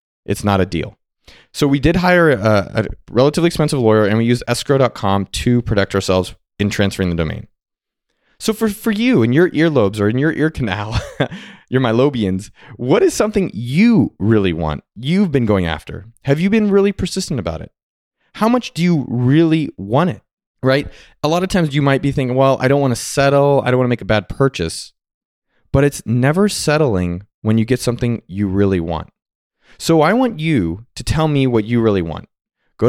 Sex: male